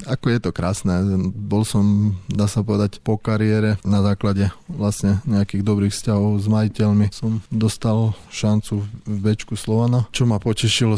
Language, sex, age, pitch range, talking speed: Slovak, male, 20-39, 95-110 Hz, 150 wpm